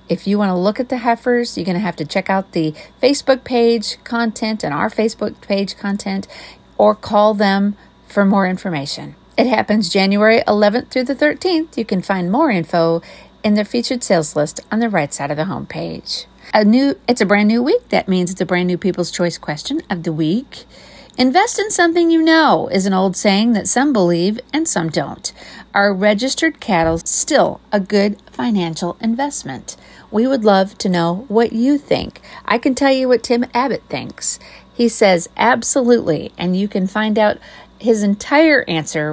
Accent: American